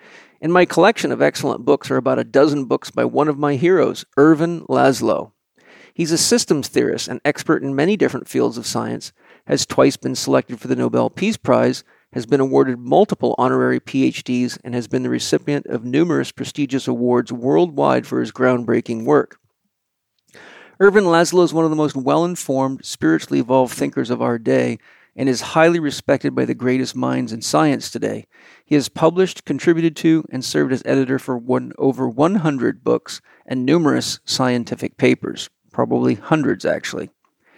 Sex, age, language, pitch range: male, 50-69, English, 125-160 Hz